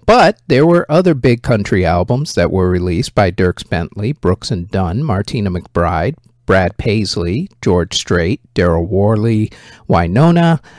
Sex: male